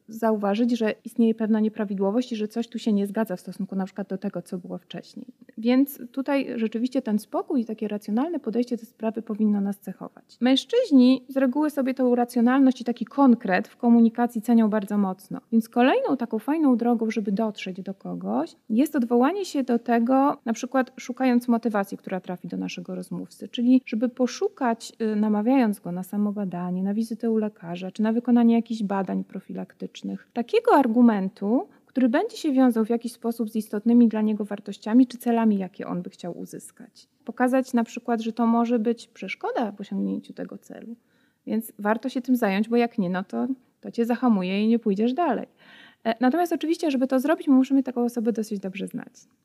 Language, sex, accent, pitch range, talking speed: Polish, female, native, 210-255 Hz, 180 wpm